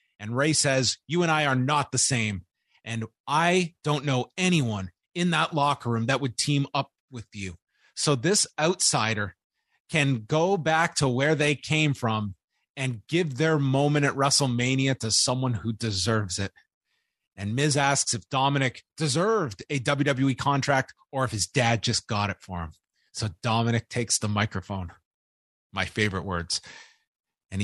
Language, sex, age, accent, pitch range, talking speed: English, male, 30-49, American, 110-155 Hz, 160 wpm